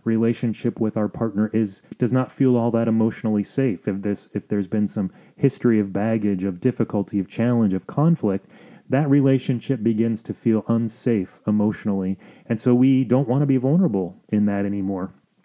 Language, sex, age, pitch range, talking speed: English, male, 30-49, 105-120 Hz, 175 wpm